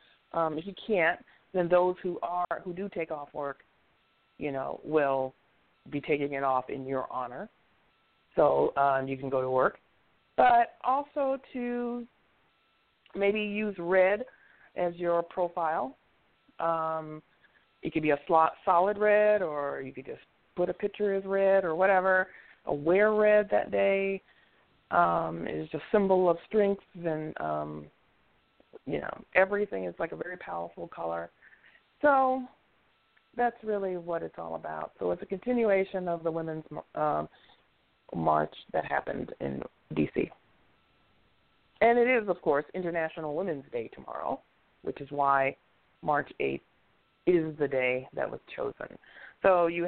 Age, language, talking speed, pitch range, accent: 40-59, English, 150 wpm, 145-195 Hz, American